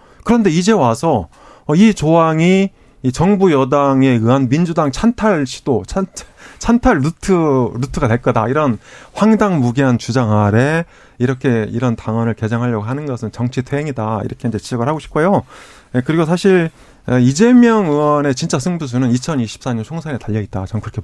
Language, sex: Korean, male